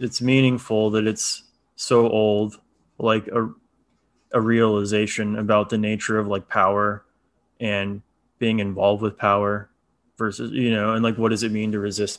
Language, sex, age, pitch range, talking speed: English, male, 20-39, 100-110 Hz, 160 wpm